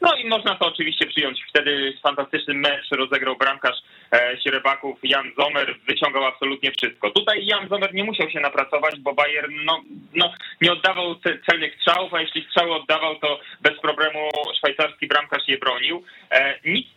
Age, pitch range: 20-39, 145-180 Hz